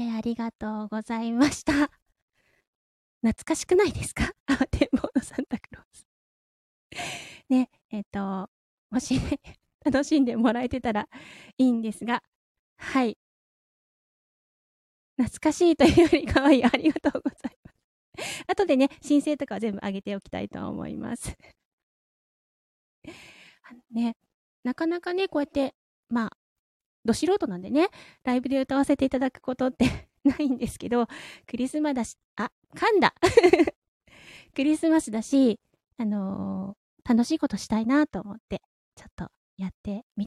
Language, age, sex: Japanese, 20-39, female